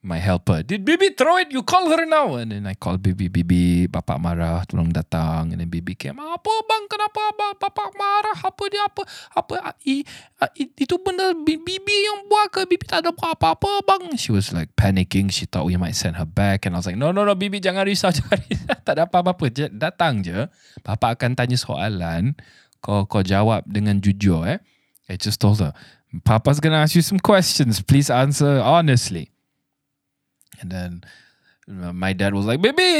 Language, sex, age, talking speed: English, male, 20-39, 180 wpm